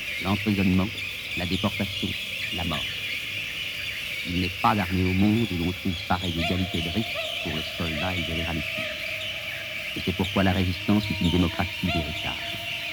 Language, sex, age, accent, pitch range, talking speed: English, male, 50-69, French, 95-115 Hz, 155 wpm